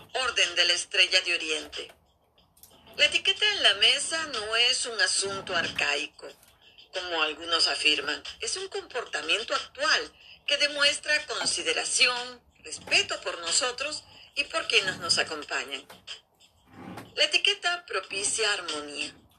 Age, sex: 40-59, female